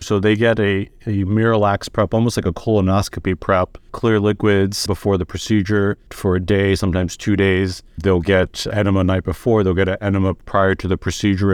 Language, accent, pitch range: English, American, 90-110 Hz